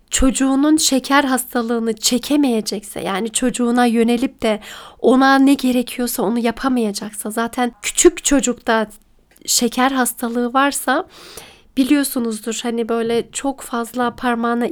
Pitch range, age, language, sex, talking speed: 235-295 Hz, 40-59, Turkish, female, 100 wpm